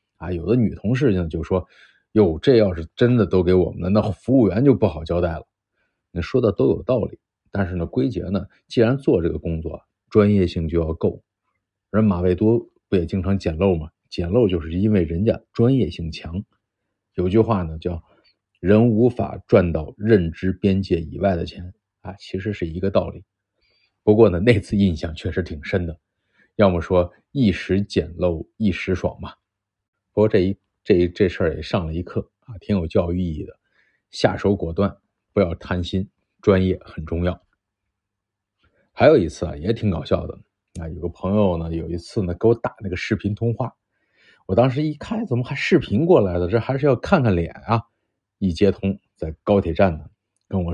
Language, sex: Chinese, male